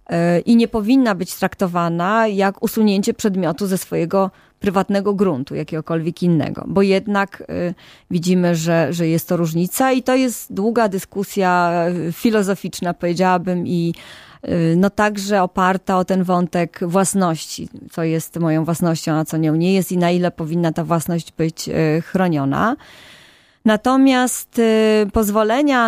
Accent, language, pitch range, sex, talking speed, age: native, Polish, 175-210 Hz, female, 130 wpm, 20-39